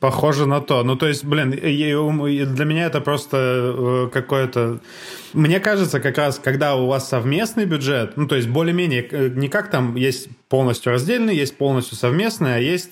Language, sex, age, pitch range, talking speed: Russian, male, 20-39, 125-150 Hz, 165 wpm